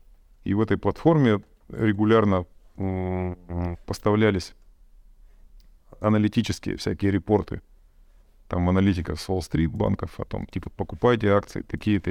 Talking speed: 110 wpm